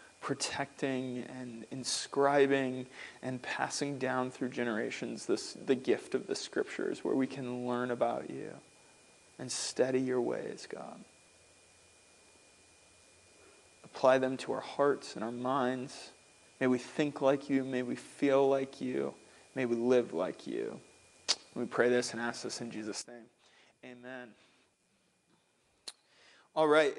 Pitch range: 130-160 Hz